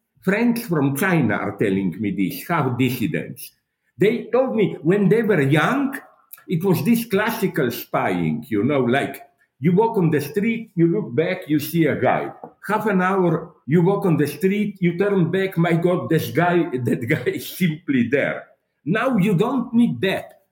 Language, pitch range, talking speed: English, 150-215 Hz, 180 wpm